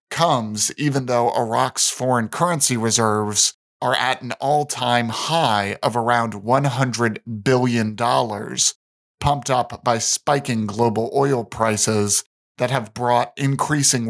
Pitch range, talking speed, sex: 115-140 Hz, 115 wpm, male